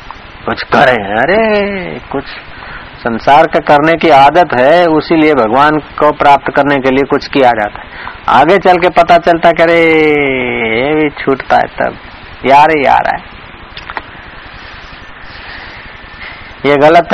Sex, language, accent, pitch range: male, Hindi, native, 105-160 Hz